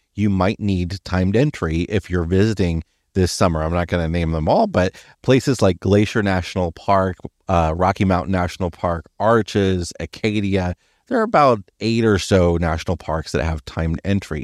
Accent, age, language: American, 30-49, English